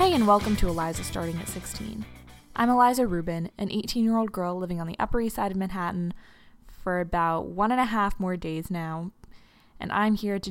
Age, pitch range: 20-39, 170-205 Hz